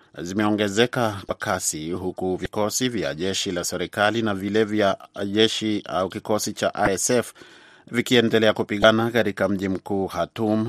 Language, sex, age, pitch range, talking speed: Swahili, male, 30-49, 95-110 Hz, 125 wpm